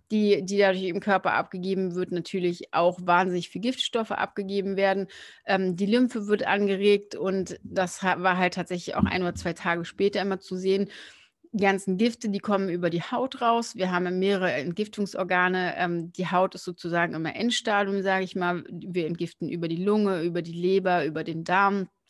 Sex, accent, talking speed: female, German, 180 wpm